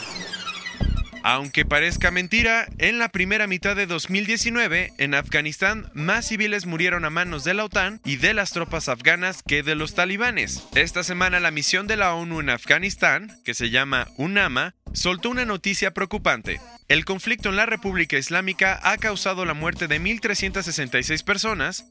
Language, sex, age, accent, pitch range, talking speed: Spanish, male, 20-39, Mexican, 155-205 Hz, 160 wpm